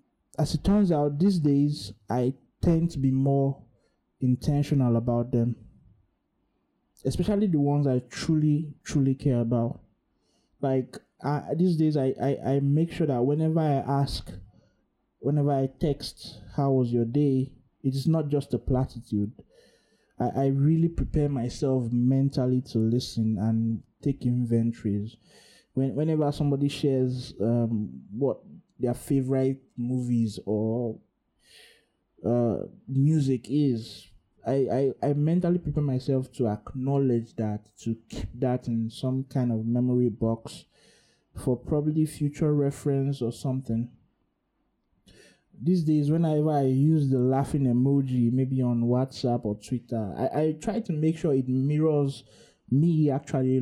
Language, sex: English, male